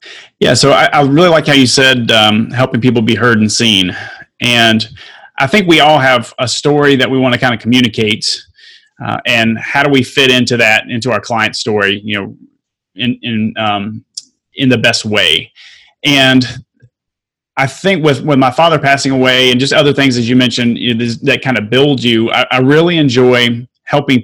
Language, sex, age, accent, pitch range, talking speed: English, male, 30-49, American, 115-140 Hz, 200 wpm